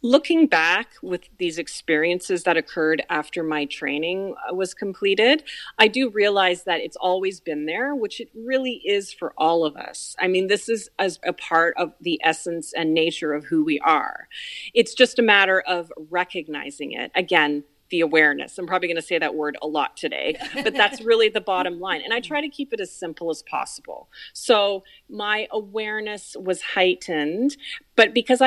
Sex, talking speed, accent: female, 185 wpm, American